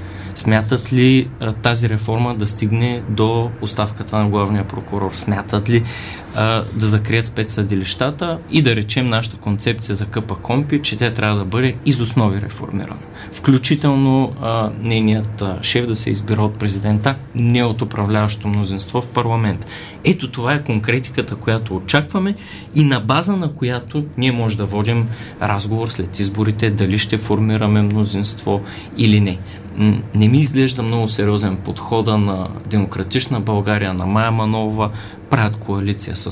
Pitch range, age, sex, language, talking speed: 100-120 Hz, 20-39, male, Bulgarian, 140 wpm